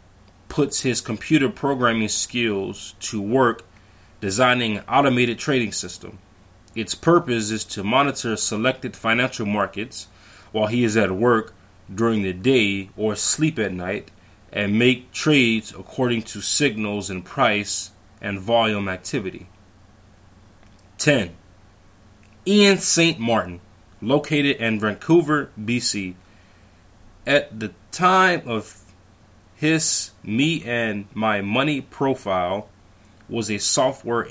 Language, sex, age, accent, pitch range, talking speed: English, male, 20-39, American, 100-130 Hz, 110 wpm